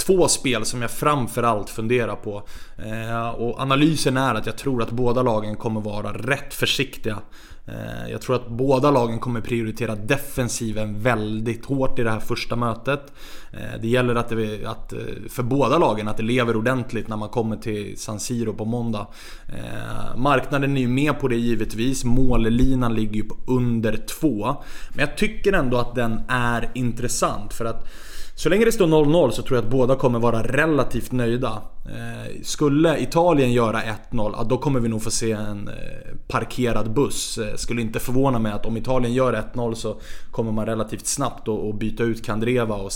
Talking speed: 180 wpm